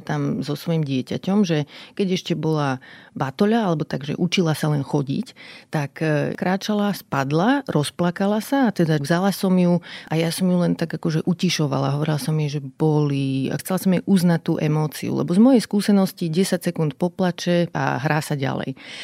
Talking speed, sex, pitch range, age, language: 175 wpm, female, 150-190 Hz, 40-59, Slovak